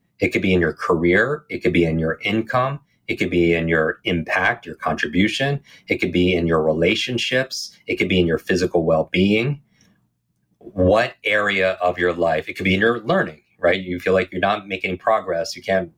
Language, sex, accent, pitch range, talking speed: English, male, American, 85-110 Hz, 205 wpm